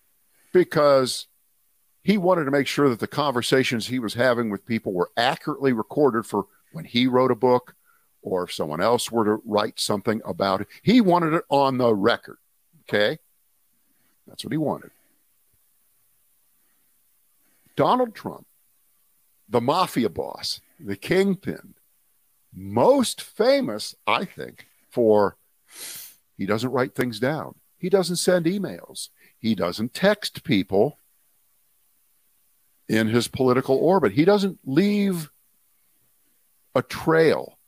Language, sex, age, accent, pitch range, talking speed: English, male, 50-69, American, 120-175 Hz, 125 wpm